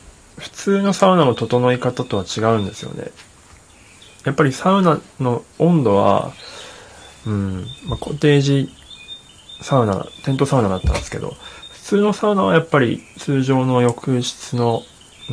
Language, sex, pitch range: Japanese, male, 100-130 Hz